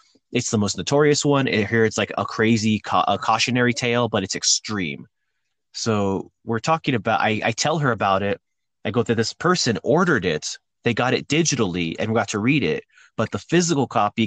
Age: 30-49